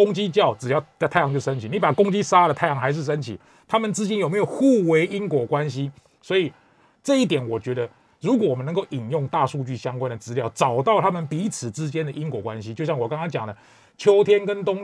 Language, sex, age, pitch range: Chinese, male, 30-49, 130-190 Hz